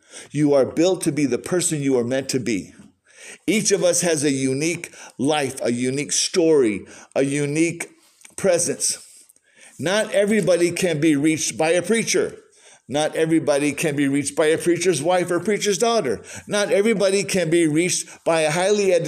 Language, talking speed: English, 165 wpm